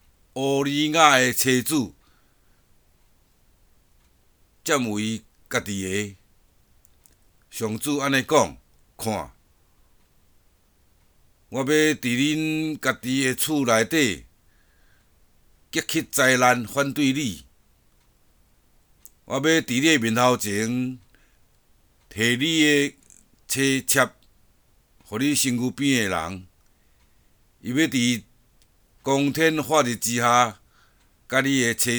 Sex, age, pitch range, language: male, 60-79, 90-130 Hz, Chinese